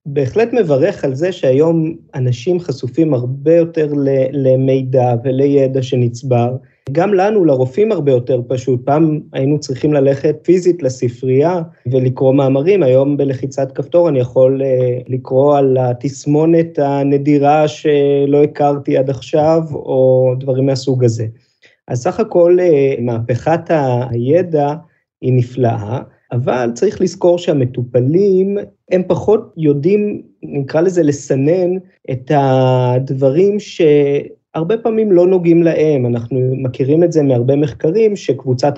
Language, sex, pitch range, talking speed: Hebrew, male, 130-165 Hz, 115 wpm